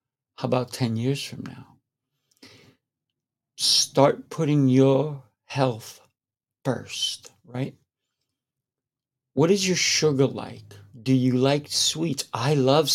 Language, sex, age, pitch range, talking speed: English, male, 60-79, 125-145 Hz, 105 wpm